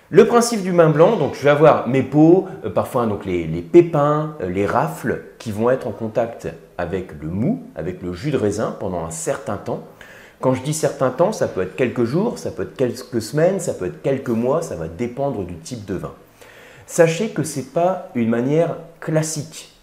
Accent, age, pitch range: French, 30-49, 100-140 Hz